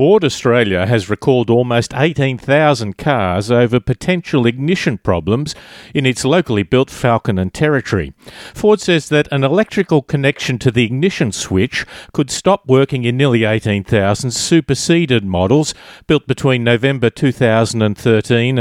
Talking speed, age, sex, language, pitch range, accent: 130 wpm, 50-69, male, English, 110-140 Hz, Australian